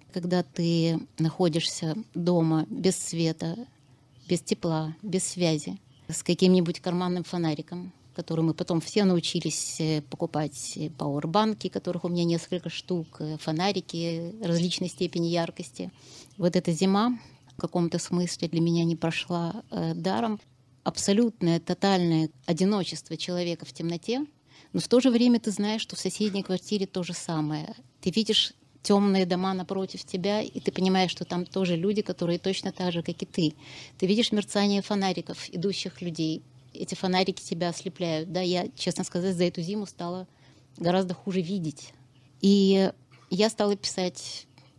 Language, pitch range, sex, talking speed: Russian, 160-190 Hz, female, 145 wpm